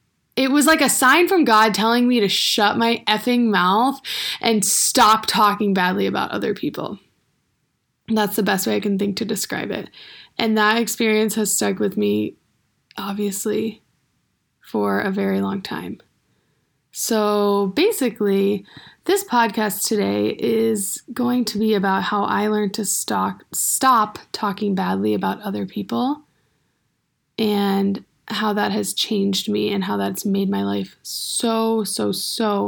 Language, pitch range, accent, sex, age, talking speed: English, 200-235 Hz, American, female, 20-39, 145 wpm